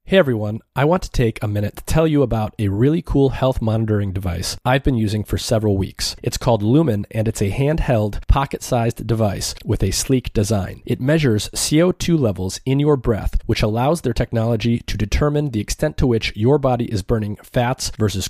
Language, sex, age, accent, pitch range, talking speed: English, male, 30-49, American, 105-140 Hz, 195 wpm